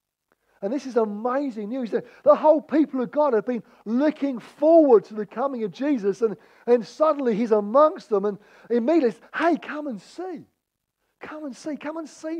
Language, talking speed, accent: English, 180 wpm, British